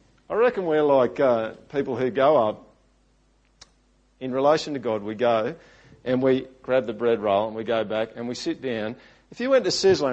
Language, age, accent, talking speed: English, 50-69, Australian, 200 wpm